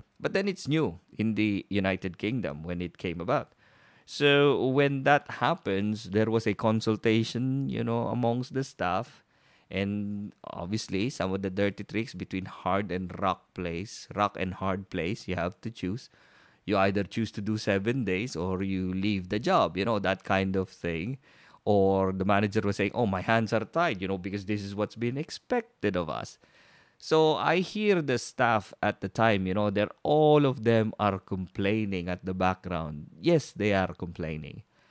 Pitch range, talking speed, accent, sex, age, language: 95-120 Hz, 180 wpm, Filipino, male, 20-39, English